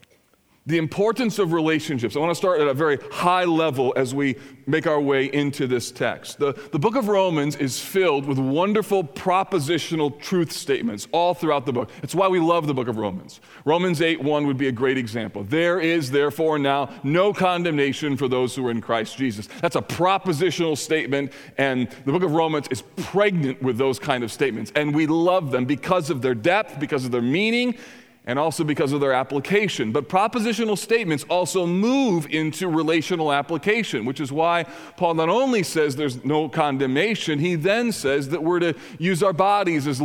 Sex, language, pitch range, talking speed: male, English, 140-185 Hz, 190 wpm